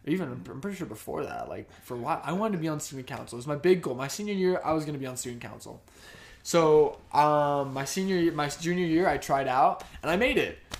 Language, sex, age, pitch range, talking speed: English, male, 20-39, 130-180 Hz, 265 wpm